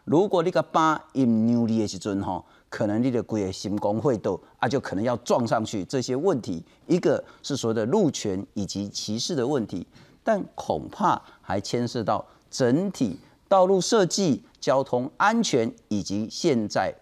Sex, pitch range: male, 120-200 Hz